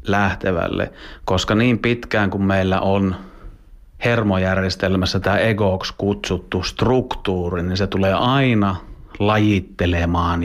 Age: 30-49